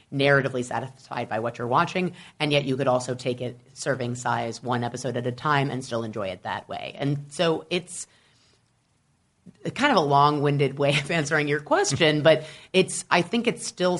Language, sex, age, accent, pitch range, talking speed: English, female, 30-49, American, 125-150 Hz, 190 wpm